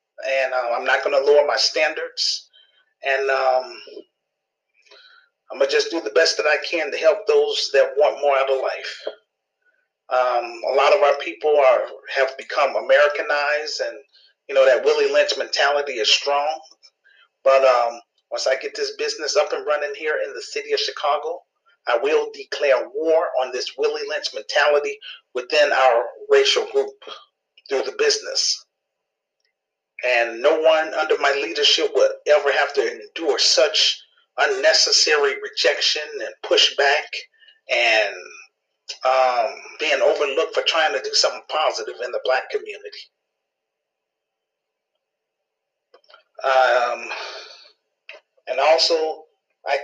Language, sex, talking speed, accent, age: English, male, 135 wpm, American, 40-59